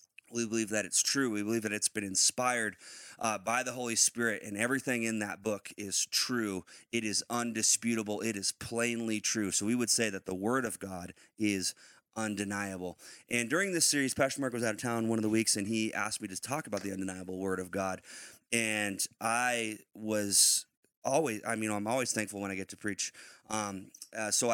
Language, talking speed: English, 205 wpm